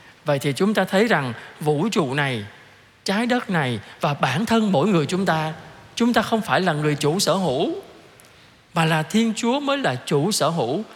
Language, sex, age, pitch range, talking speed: Vietnamese, male, 20-39, 155-205 Hz, 205 wpm